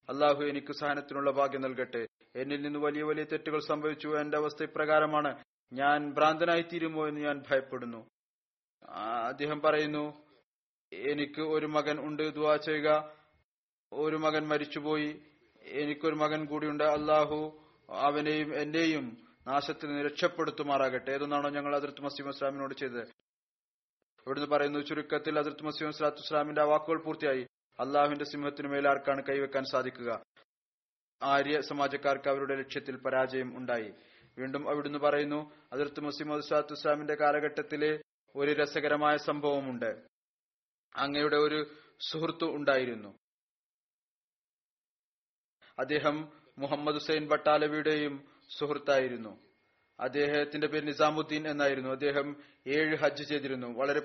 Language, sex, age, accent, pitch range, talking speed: Malayalam, male, 20-39, native, 140-150 Hz, 100 wpm